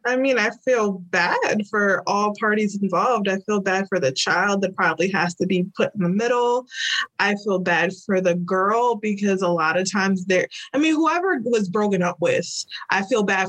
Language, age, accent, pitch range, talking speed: English, 20-39, American, 185-235 Hz, 205 wpm